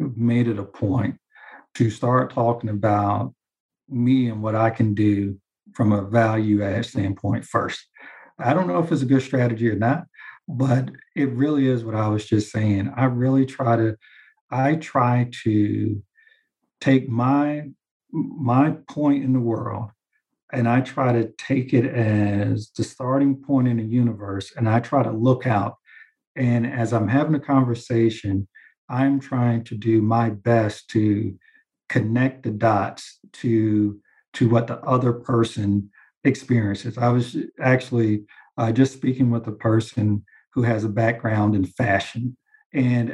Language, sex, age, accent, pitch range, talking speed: English, male, 50-69, American, 110-135 Hz, 155 wpm